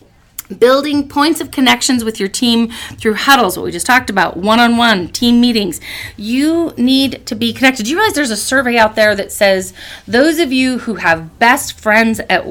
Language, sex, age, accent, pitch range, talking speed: English, female, 30-49, American, 170-235 Hz, 200 wpm